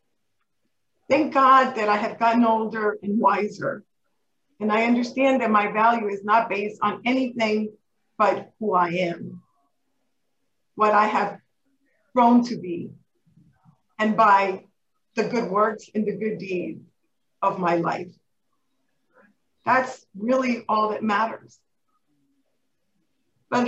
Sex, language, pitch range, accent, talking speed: female, English, 200-260 Hz, American, 120 wpm